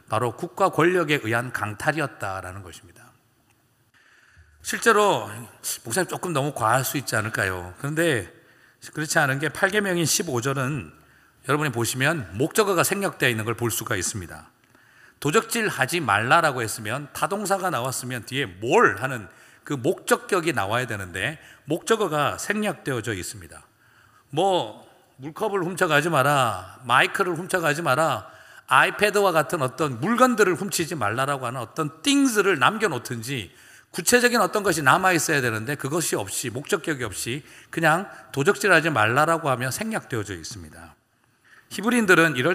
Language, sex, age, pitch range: Korean, male, 40-59, 120-175 Hz